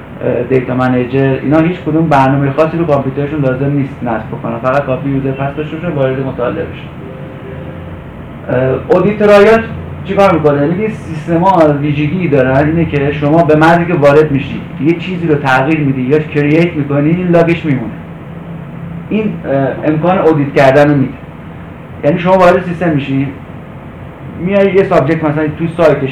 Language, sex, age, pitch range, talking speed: Persian, male, 30-49, 135-165 Hz, 145 wpm